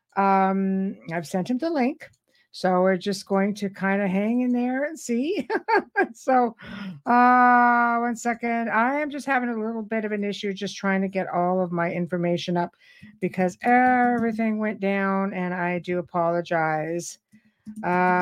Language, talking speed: English, 165 wpm